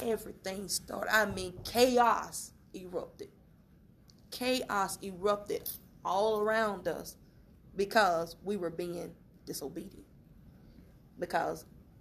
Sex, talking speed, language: female, 85 wpm, English